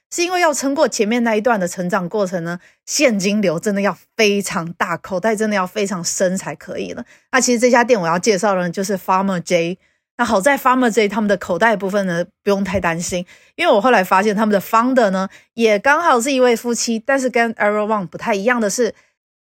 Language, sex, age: Chinese, female, 30-49